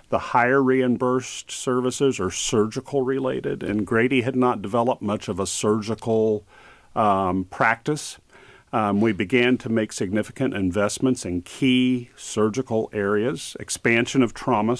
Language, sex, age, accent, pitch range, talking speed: English, male, 50-69, American, 100-125 Hz, 130 wpm